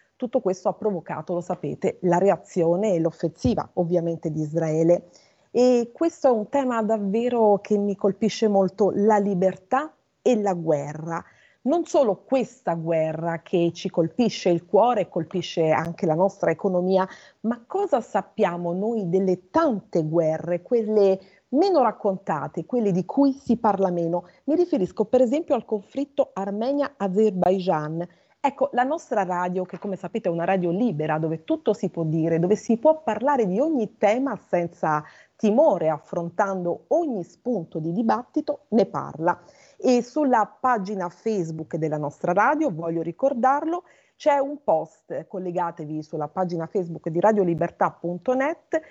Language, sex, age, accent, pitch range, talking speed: Italian, female, 30-49, native, 175-250 Hz, 140 wpm